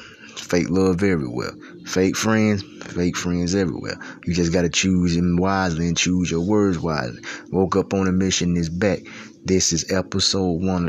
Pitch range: 85-95 Hz